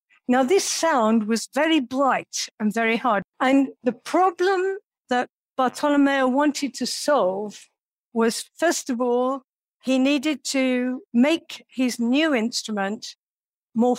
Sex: female